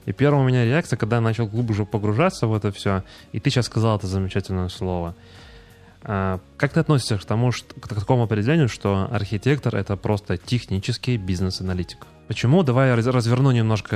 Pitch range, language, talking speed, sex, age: 95-120 Hz, Russian, 170 wpm, male, 20-39